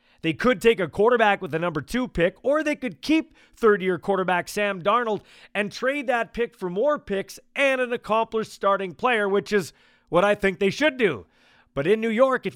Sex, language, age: male, English, 40-59